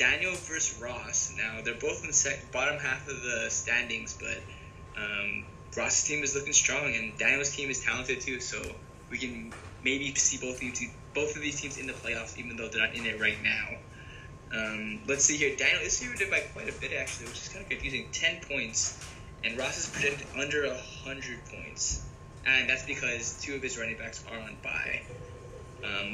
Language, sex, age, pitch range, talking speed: English, male, 20-39, 110-130 Hz, 200 wpm